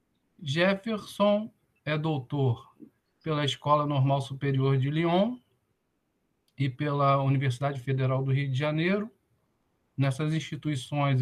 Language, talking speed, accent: Portuguese, 100 wpm, Brazilian